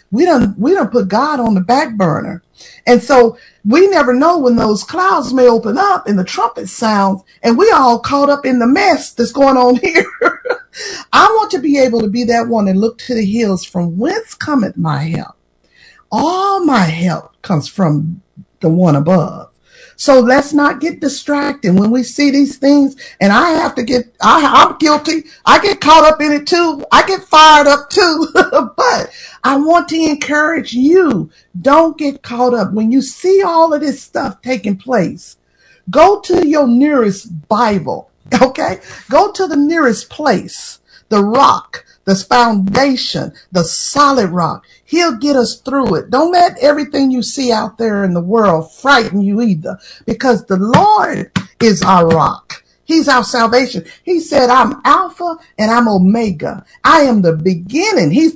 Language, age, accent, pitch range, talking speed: English, 50-69, American, 215-315 Hz, 175 wpm